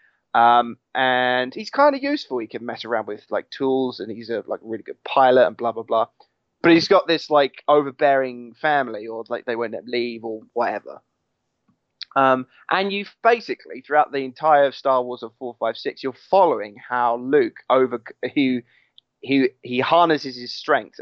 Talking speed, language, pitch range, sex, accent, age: 180 wpm, English, 120-150 Hz, male, British, 20-39